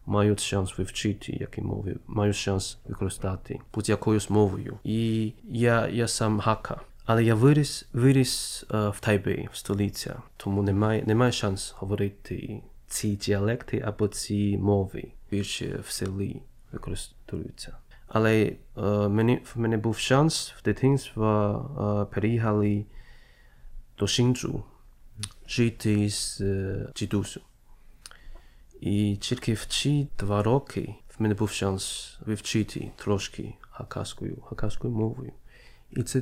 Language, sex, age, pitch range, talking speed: Ukrainian, male, 20-39, 100-120 Hz, 115 wpm